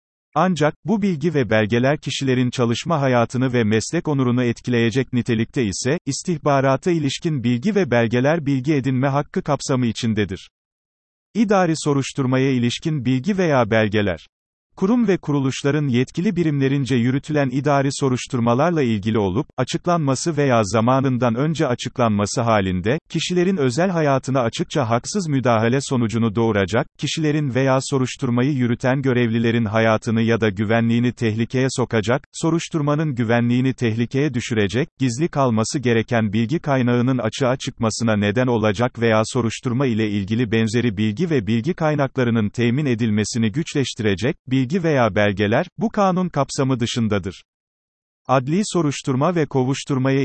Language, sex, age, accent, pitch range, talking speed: Turkish, male, 40-59, native, 115-150 Hz, 120 wpm